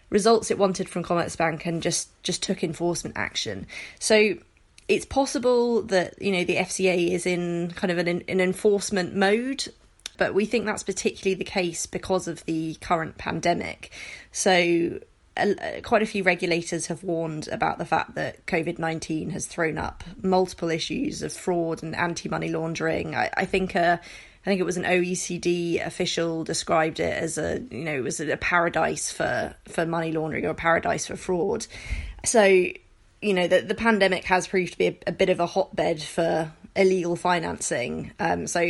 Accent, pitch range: British, 170-195 Hz